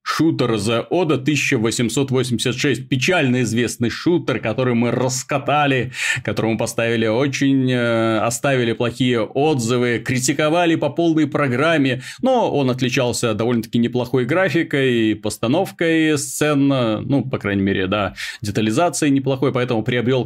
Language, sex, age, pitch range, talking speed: Russian, male, 30-49, 115-145 Hz, 115 wpm